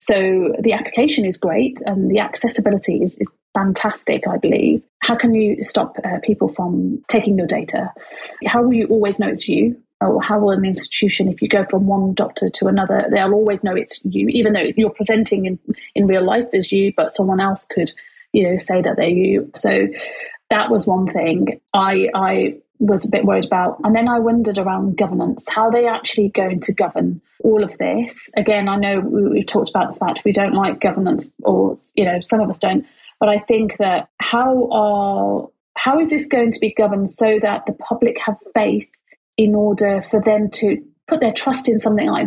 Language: English